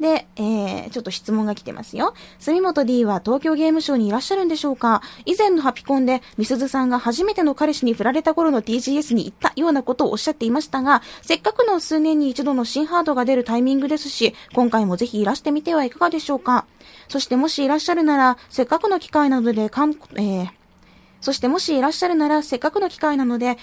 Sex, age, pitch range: female, 20-39, 230-305 Hz